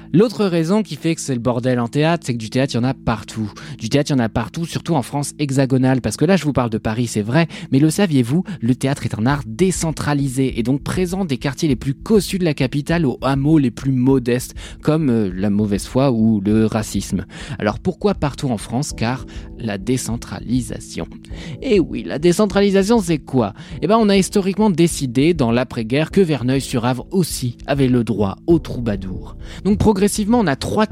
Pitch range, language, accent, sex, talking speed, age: 110-155 Hz, French, French, male, 215 wpm, 20-39